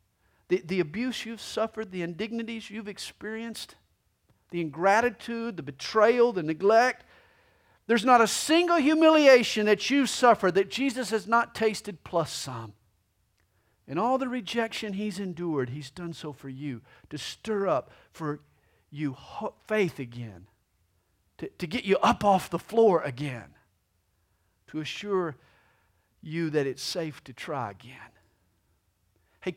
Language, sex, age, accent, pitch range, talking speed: English, male, 50-69, American, 115-190 Hz, 135 wpm